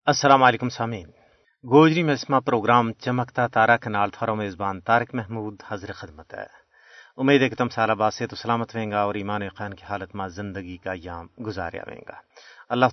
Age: 40-59